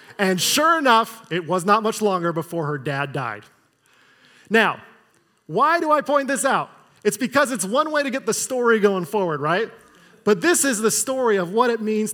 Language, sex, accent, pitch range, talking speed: English, male, American, 185-245 Hz, 200 wpm